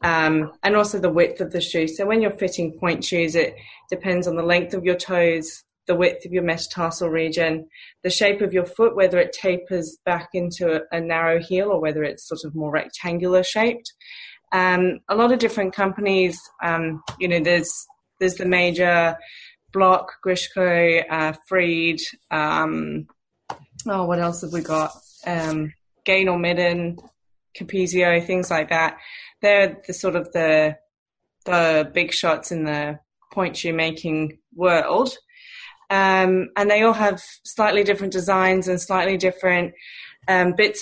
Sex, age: female, 20-39